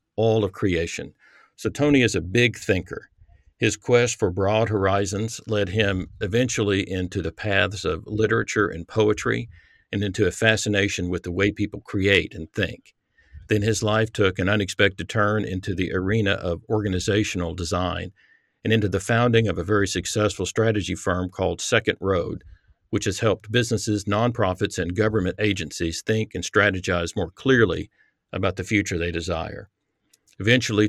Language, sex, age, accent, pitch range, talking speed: English, male, 50-69, American, 95-110 Hz, 155 wpm